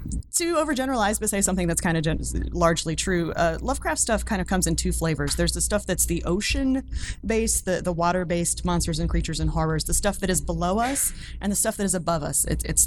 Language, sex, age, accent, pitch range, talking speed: English, female, 30-49, American, 155-205 Hz, 220 wpm